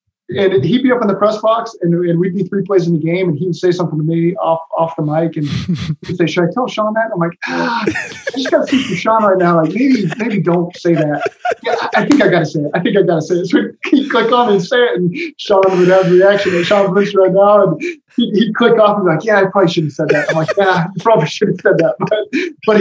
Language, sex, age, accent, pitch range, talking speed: English, male, 20-39, American, 165-200 Hz, 290 wpm